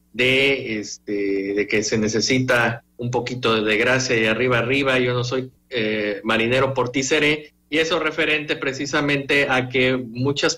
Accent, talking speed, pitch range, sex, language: Mexican, 165 wpm, 115-140 Hz, male, Spanish